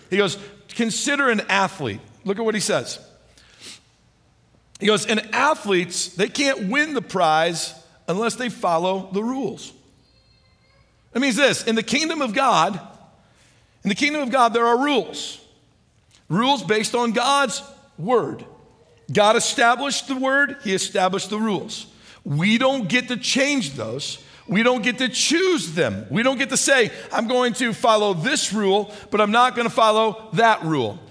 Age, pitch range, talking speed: 50-69, 185-245 Hz, 160 wpm